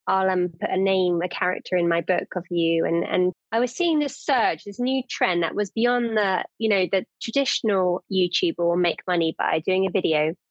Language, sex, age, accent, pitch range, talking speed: English, female, 20-39, British, 180-230 Hz, 215 wpm